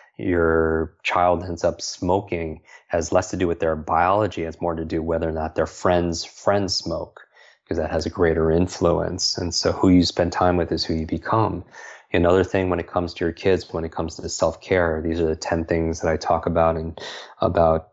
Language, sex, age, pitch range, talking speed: English, male, 30-49, 80-90 Hz, 220 wpm